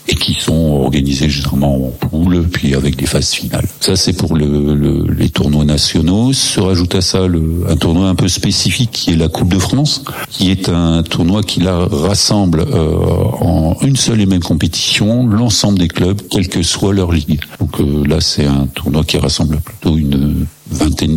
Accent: French